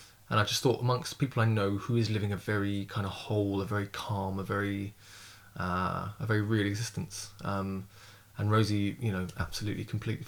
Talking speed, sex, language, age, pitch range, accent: 195 wpm, male, English, 20-39, 100-115 Hz, British